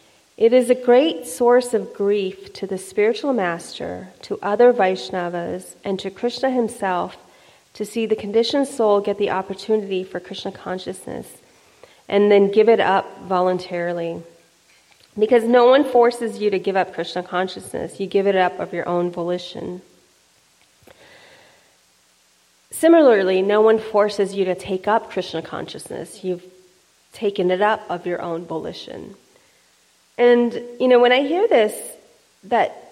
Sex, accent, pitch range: female, American, 180-225 Hz